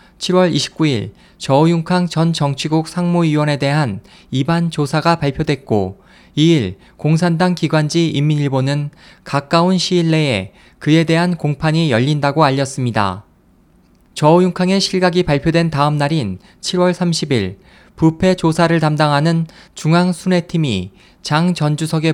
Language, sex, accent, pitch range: Korean, male, native, 140-175 Hz